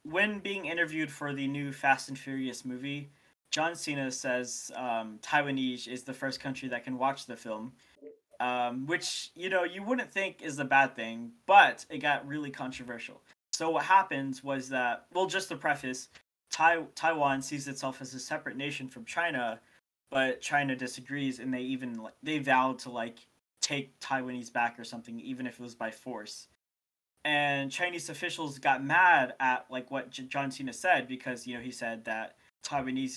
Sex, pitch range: male, 125-150 Hz